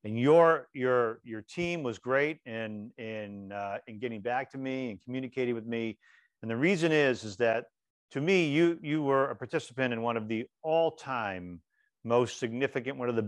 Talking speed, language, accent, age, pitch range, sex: 190 wpm, English, American, 40-59, 110-135 Hz, male